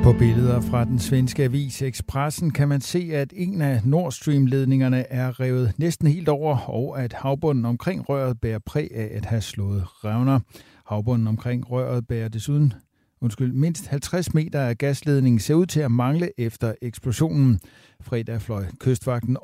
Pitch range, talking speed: 115-145 Hz, 165 wpm